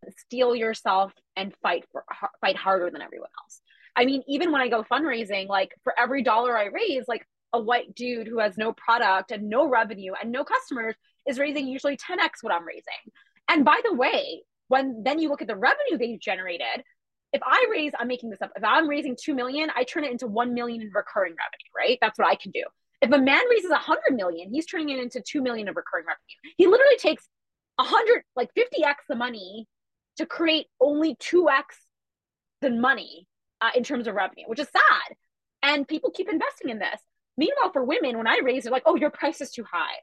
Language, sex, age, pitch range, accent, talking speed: English, female, 20-39, 230-305 Hz, American, 220 wpm